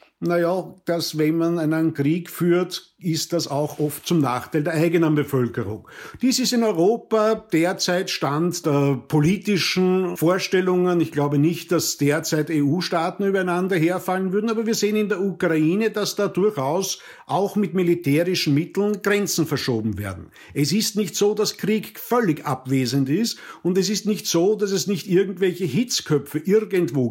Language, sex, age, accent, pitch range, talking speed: German, male, 50-69, German, 155-195 Hz, 155 wpm